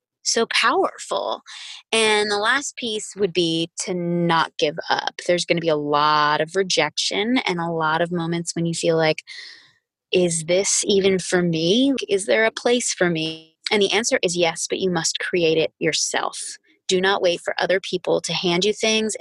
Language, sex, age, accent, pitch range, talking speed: English, female, 20-39, American, 165-210 Hz, 190 wpm